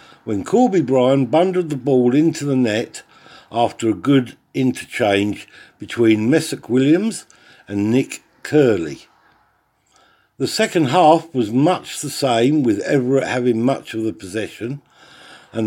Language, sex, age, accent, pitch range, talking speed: English, male, 50-69, British, 115-170 Hz, 130 wpm